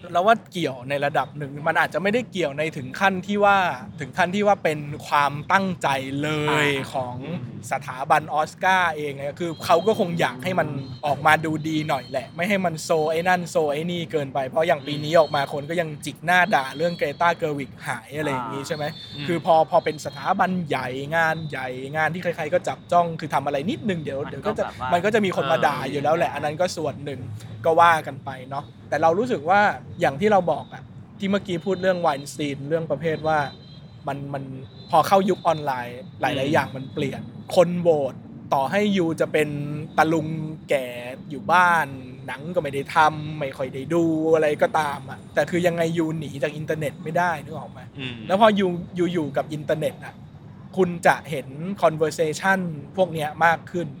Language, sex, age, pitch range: English, male, 20-39, 145-175 Hz